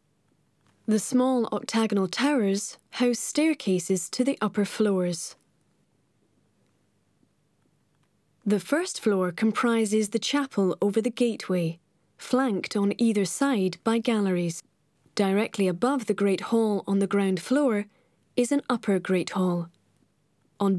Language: English